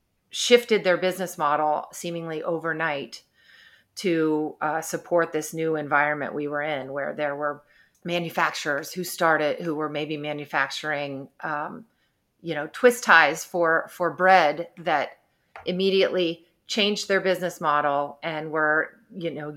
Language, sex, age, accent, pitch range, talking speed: English, female, 30-49, American, 155-180 Hz, 130 wpm